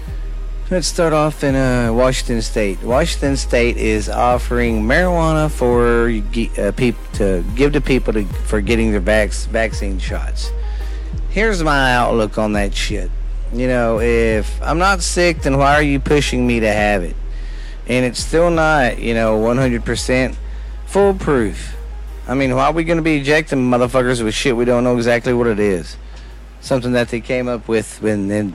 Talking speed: 170 wpm